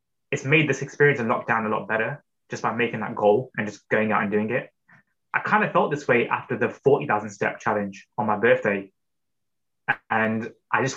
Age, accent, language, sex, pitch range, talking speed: 20-39, British, English, male, 105-140 Hz, 210 wpm